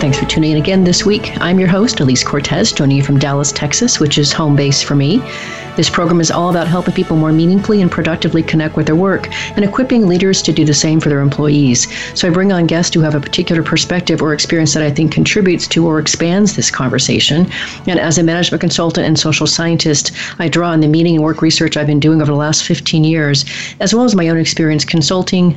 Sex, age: female, 40-59